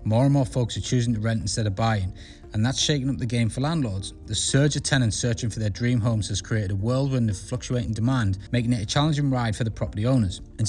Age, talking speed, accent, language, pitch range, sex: 20-39, 255 wpm, British, English, 105-130 Hz, male